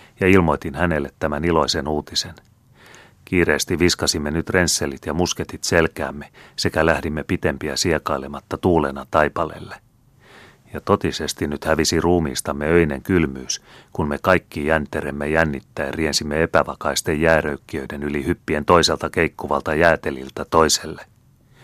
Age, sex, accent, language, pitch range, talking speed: 30-49, male, native, Finnish, 75-90 Hz, 110 wpm